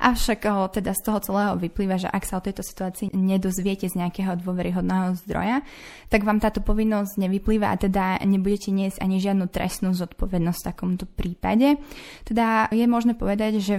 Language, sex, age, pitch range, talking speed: Slovak, female, 20-39, 185-215 Hz, 165 wpm